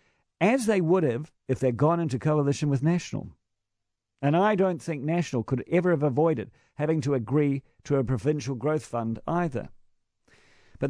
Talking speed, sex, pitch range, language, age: 165 wpm, male, 125-170 Hz, English, 50-69